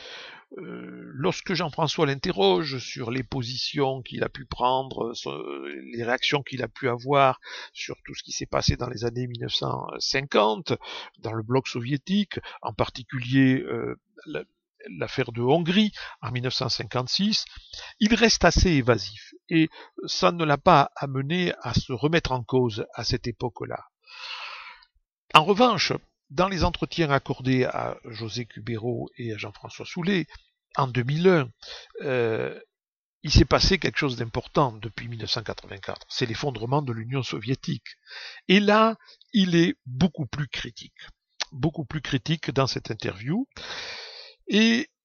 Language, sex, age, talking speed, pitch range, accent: French, male, 60-79, 135 wpm, 125-185 Hz, French